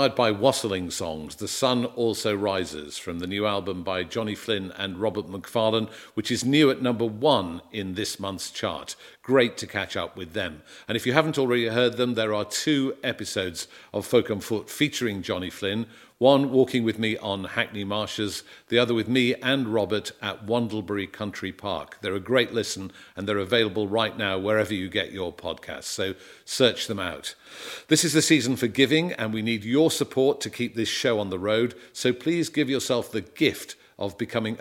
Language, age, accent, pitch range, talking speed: English, 50-69, British, 100-130 Hz, 195 wpm